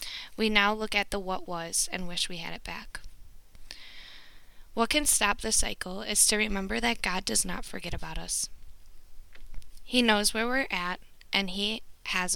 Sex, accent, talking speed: female, American, 175 wpm